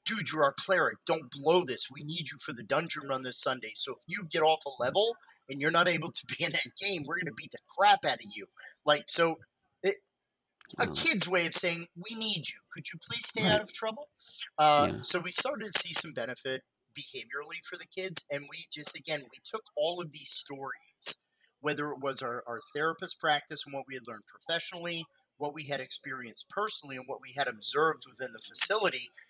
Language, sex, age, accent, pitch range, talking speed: English, male, 30-49, American, 135-170 Hz, 215 wpm